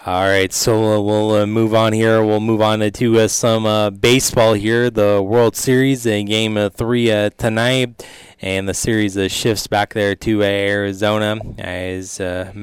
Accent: American